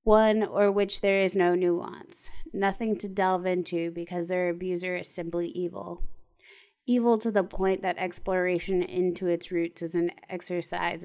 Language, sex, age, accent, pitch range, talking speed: English, female, 20-39, American, 175-200 Hz, 155 wpm